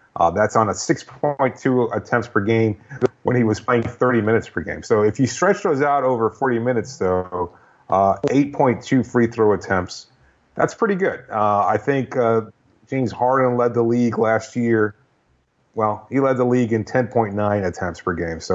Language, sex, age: English, male, 30-49